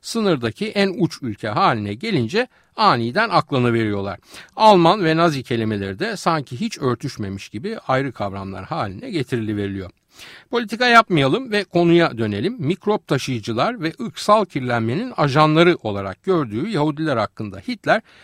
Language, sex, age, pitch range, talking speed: Turkish, male, 60-79, 115-190 Hz, 125 wpm